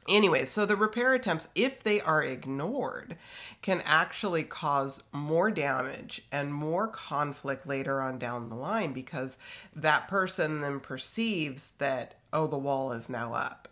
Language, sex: English, female